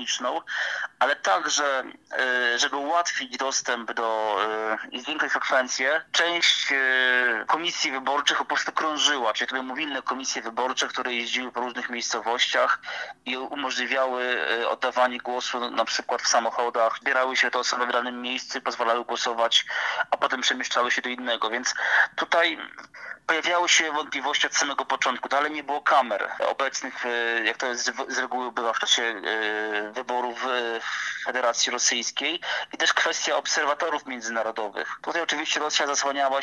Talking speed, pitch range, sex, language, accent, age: 135 wpm, 120-130 Hz, male, Polish, native, 30-49